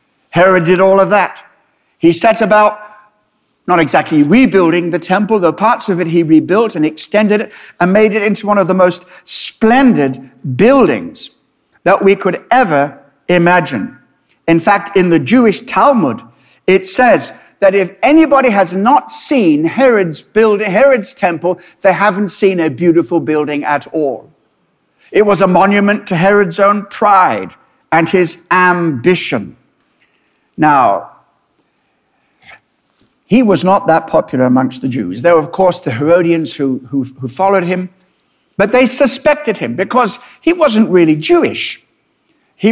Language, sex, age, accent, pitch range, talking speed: English, male, 60-79, British, 160-210 Hz, 145 wpm